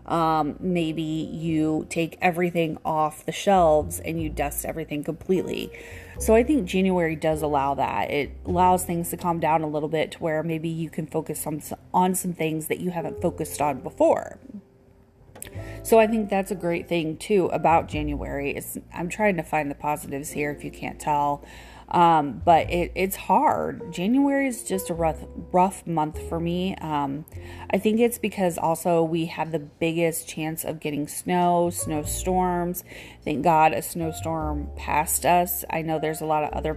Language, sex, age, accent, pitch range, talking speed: English, female, 30-49, American, 155-185 Hz, 180 wpm